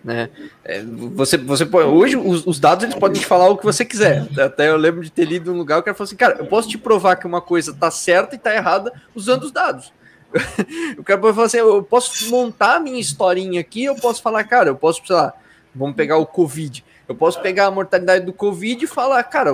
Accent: Brazilian